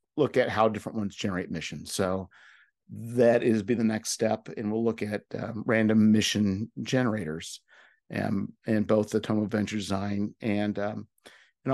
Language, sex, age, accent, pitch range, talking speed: English, male, 50-69, American, 105-120 Hz, 165 wpm